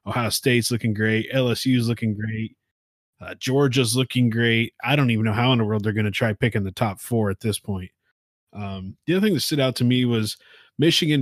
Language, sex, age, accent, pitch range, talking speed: English, male, 20-39, American, 105-125 Hz, 220 wpm